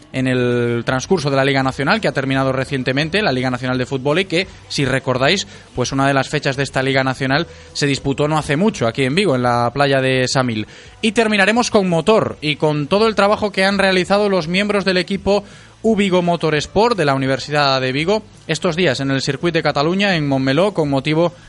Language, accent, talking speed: Spanish, Spanish, 215 wpm